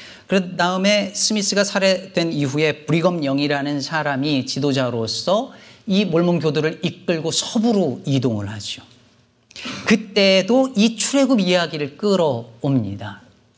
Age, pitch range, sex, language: 40-59, 120-175 Hz, male, Korean